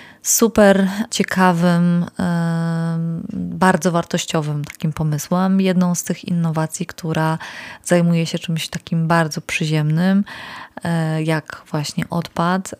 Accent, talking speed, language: native, 95 wpm, Polish